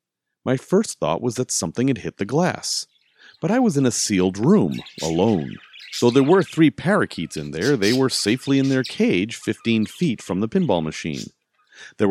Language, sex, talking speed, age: English, male, 190 wpm, 40-59